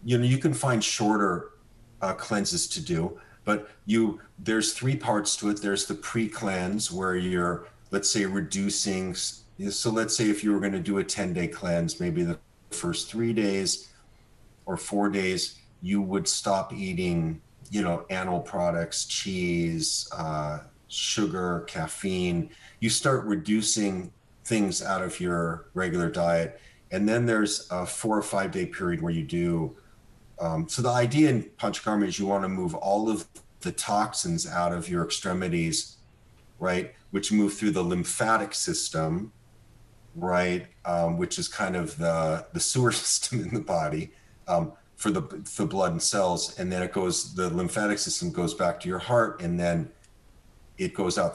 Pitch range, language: 90-115 Hz, English